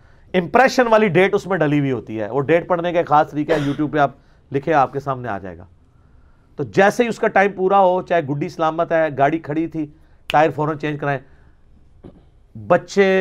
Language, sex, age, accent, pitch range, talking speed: English, male, 40-59, Indian, 135-190 Hz, 195 wpm